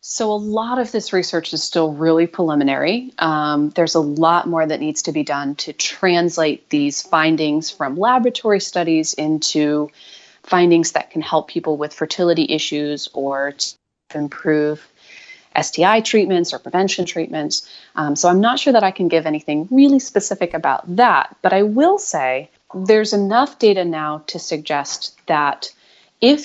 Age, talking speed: 30-49, 155 wpm